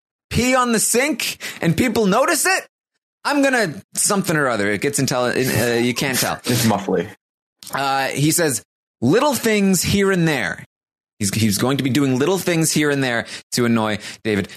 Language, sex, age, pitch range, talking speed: English, male, 20-39, 100-155 Hz, 185 wpm